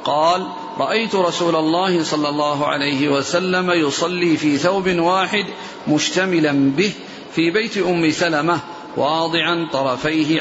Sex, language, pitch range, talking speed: male, Arabic, 155-185 Hz, 115 wpm